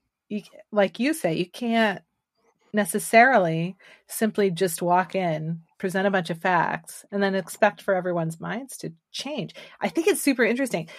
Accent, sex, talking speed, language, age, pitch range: American, female, 155 wpm, English, 30-49, 170-220 Hz